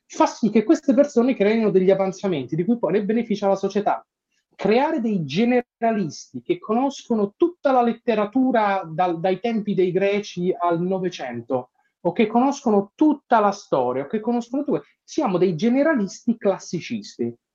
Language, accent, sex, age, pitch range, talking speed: Italian, native, male, 30-49, 170-225 Hz, 150 wpm